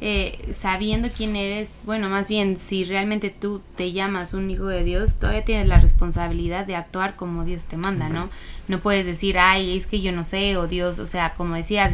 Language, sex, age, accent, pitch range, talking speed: Portuguese, female, 20-39, Mexican, 190-235 Hz, 210 wpm